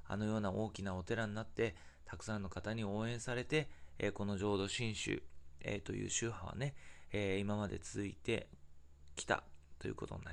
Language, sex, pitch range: Japanese, male, 85-115 Hz